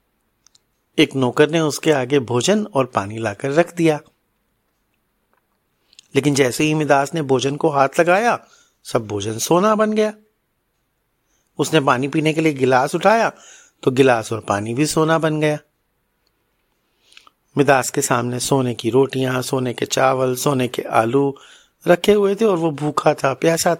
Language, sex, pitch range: Hindi, male, 130-170 Hz